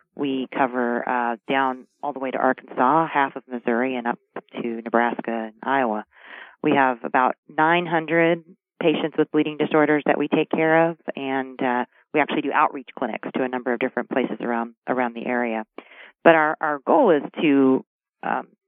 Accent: American